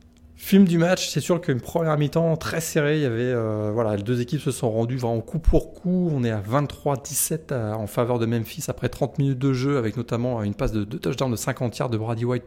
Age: 20-39